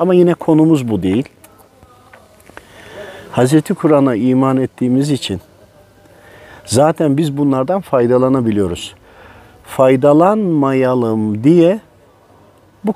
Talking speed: 80 wpm